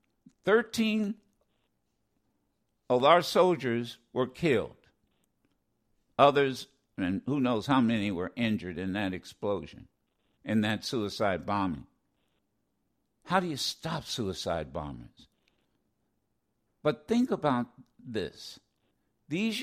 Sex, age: male, 60-79